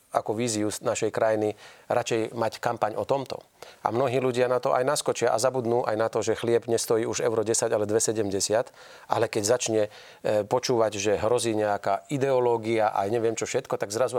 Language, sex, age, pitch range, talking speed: Slovak, male, 40-59, 115-135 Hz, 180 wpm